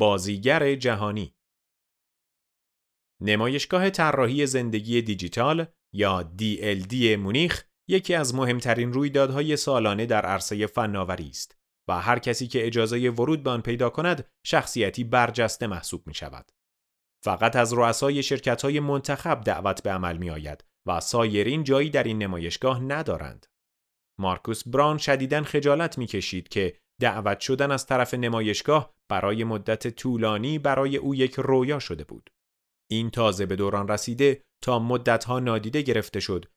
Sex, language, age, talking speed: male, Persian, 30-49, 135 wpm